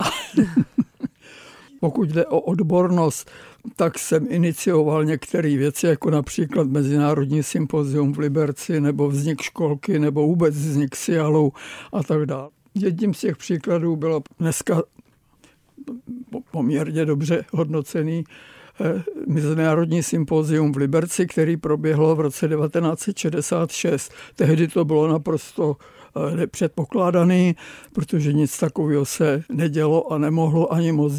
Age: 60-79